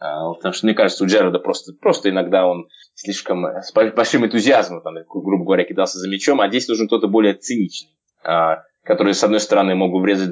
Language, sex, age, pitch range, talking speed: Russian, male, 20-39, 85-120 Hz, 205 wpm